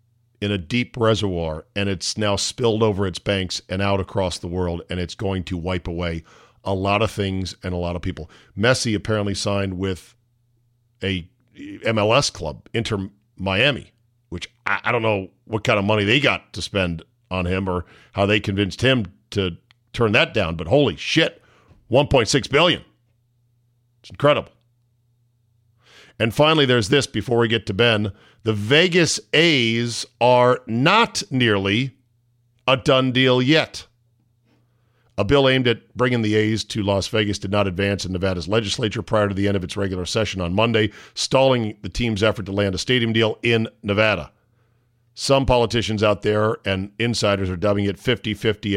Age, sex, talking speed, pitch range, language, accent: 50-69, male, 165 wpm, 100-120 Hz, English, American